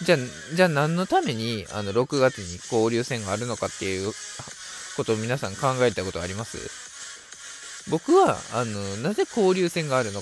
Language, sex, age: Japanese, male, 20-39